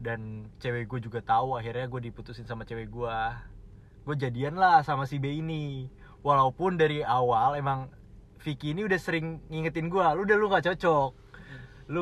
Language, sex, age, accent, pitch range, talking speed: Indonesian, male, 20-39, native, 115-160 Hz, 165 wpm